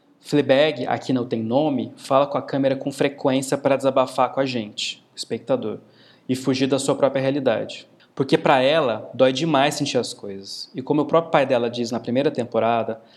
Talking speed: 190 wpm